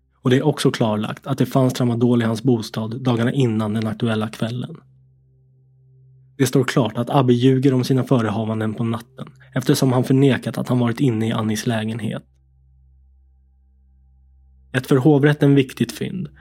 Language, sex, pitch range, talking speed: Swedish, male, 110-130 Hz, 155 wpm